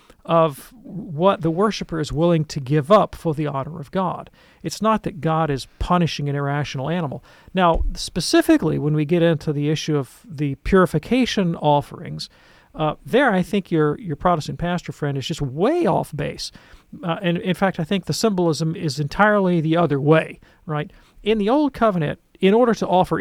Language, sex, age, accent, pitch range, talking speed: English, male, 40-59, American, 145-185 Hz, 185 wpm